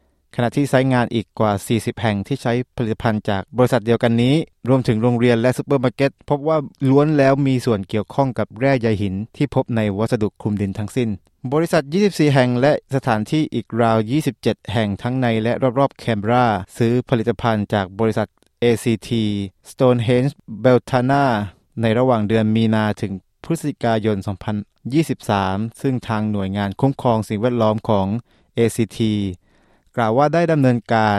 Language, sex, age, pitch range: Thai, male, 20-39, 105-130 Hz